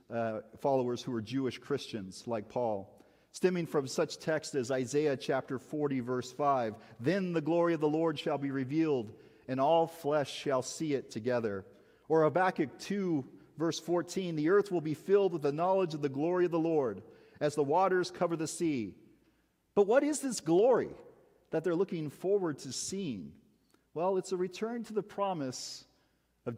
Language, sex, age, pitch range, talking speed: English, male, 40-59, 140-190 Hz, 175 wpm